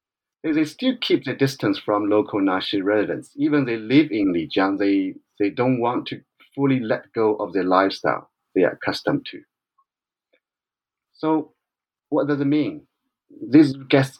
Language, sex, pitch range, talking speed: English, male, 105-150 Hz, 150 wpm